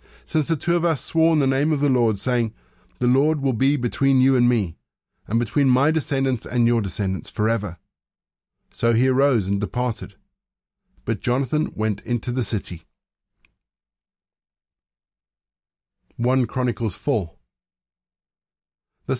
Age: 50-69